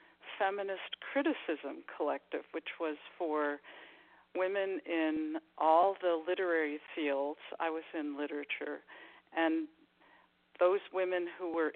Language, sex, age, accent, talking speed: English, female, 50-69, American, 105 wpm